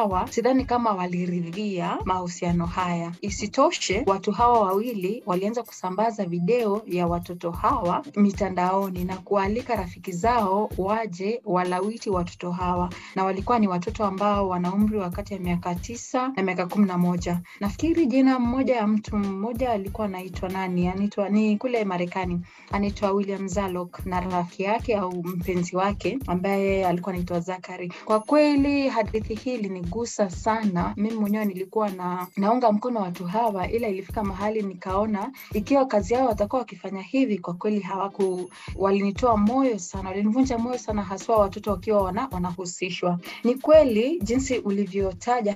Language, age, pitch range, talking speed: Swahili, 30-49, 185-225 Hz, 140 wpm